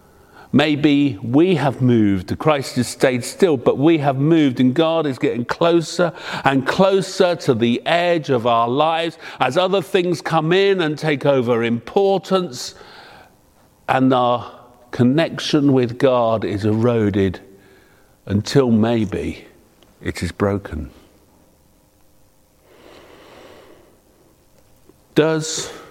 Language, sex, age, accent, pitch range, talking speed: English, male, 50-69, British, 120-165 Hz, 110 wpm